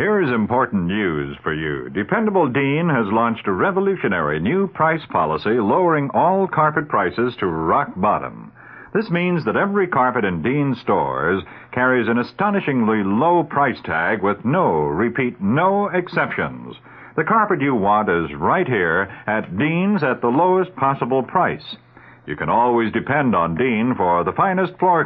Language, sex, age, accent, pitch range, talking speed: English, male, 60-79, American, 120-180 Hz, 155 wpm